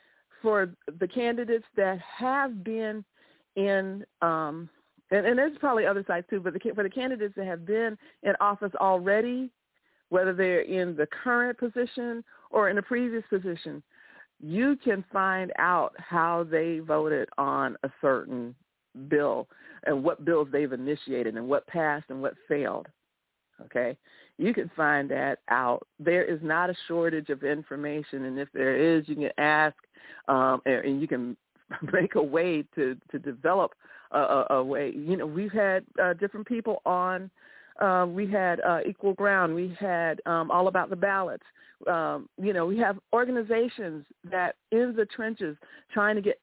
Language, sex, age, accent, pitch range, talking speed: English, female, 50-69, American, 165-215 Hz, 160 wpm